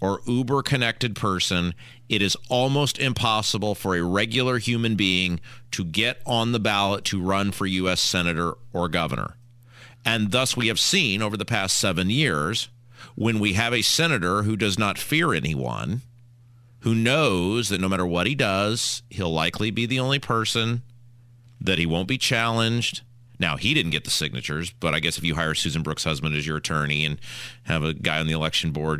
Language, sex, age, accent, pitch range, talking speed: English, male, 40-59, American, 95-130 Hz, 185 wpm